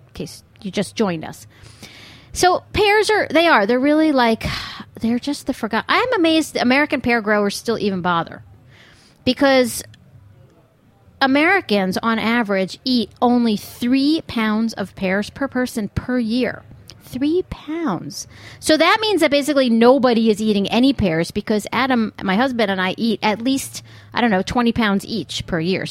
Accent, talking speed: American, 160 wpm